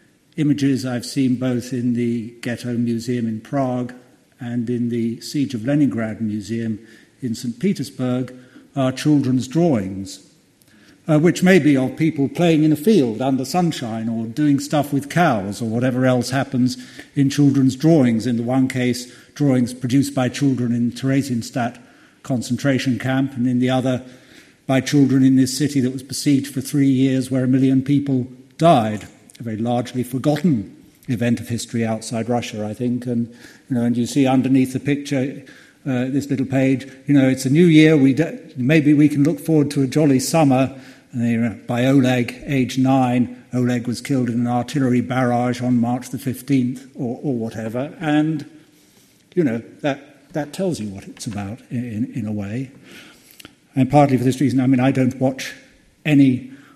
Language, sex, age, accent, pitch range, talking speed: English, male, 60-79, British, 120-140 Hz, 175 wpm